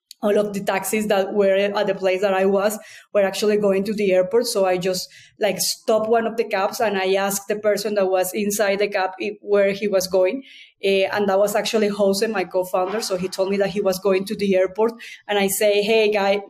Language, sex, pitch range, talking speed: English, female, 195-225 Hz, 235 wpm